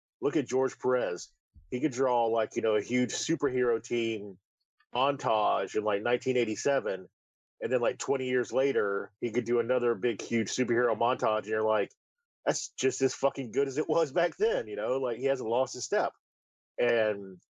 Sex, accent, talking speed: male, American, 185 wpm